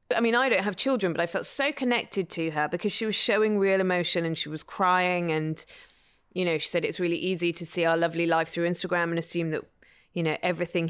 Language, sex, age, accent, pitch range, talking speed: English, female, 20-39, British, 165-210 Hz, 240 wpm